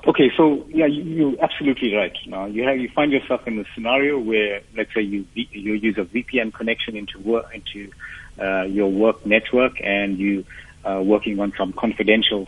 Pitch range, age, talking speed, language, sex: 95-115 Hz, 50-69, 190 wpm, English, male